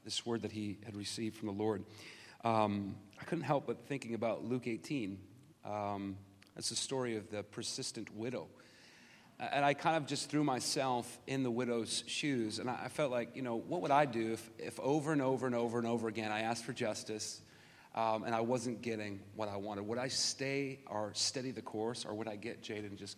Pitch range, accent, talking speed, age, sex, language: 105-130 Hz, American, 215 wpm, 40-59, male, English